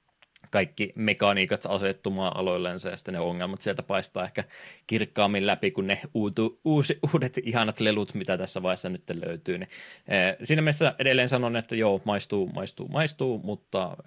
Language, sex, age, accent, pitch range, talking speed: Finnish, male, 20-39, native, 95-120 Hz, 150 wpm